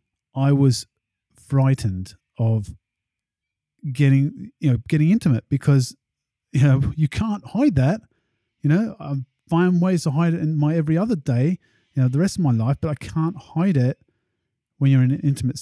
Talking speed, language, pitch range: 175 wpm, English, 115-155 Hz